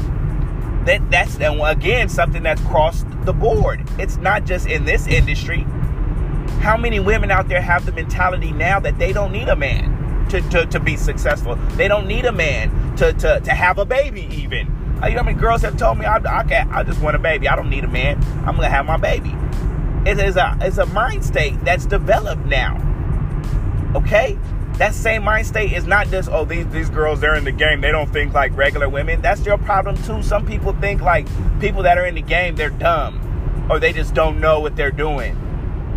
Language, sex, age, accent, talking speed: English, male, 30-49, American, 215 wpm